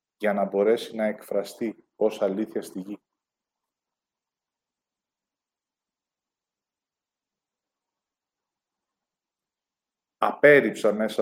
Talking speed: 60 wpm